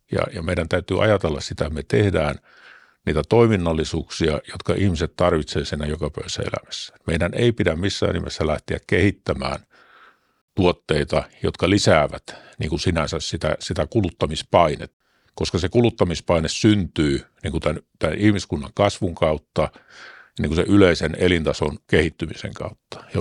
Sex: male